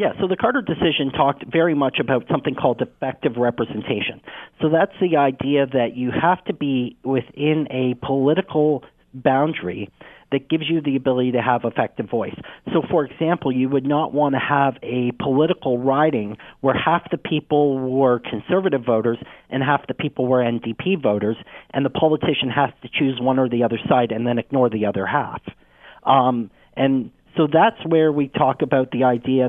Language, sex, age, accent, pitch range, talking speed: English, male, 40-59, American, 120-150 Hz, 180 wpm